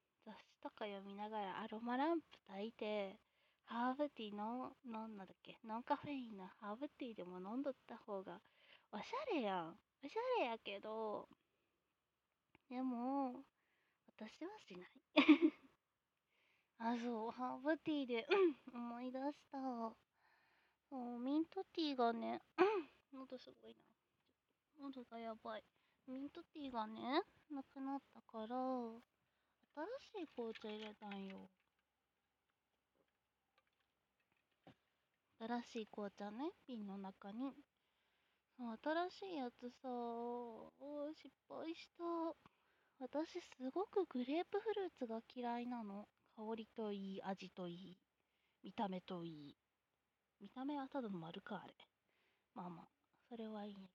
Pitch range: 215-290 Hz